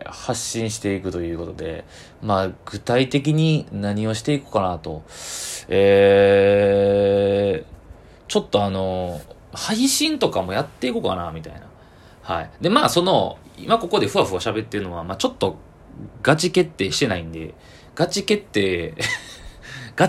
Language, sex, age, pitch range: Japanese, male, 20-39, 85-120 Hz